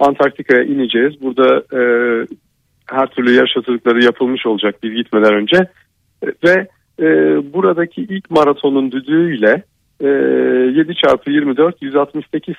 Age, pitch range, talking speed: 50-69, 115-140 Hz, 105 wpm